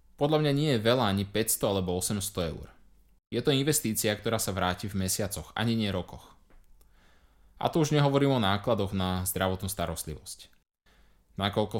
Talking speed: 160 wpm